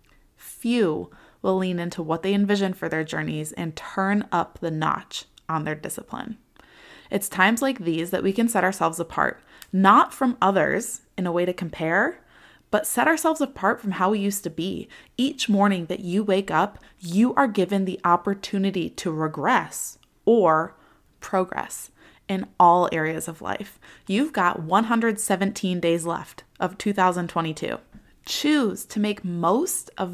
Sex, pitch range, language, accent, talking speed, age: female, 180-220 Hz, English, American, 155 wpm, 20-39